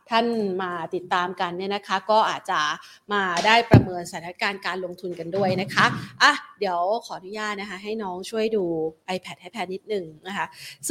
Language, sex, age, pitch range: Thai, female, 30-49, 195-245 Hz